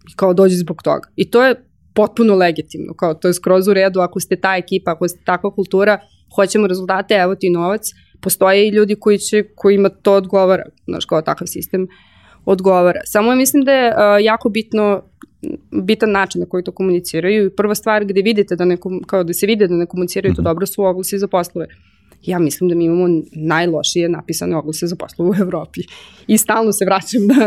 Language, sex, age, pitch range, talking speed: English, female, 20-39, 180-215 Hz, 200 wpm